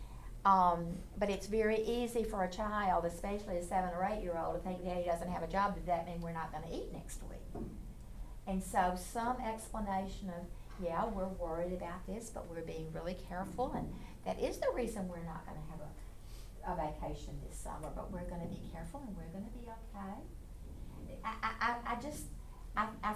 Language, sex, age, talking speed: English, female, 60-79, 205 wpm